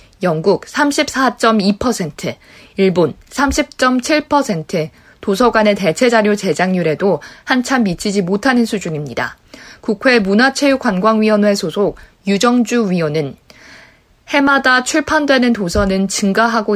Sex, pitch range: female, 185-245 Hz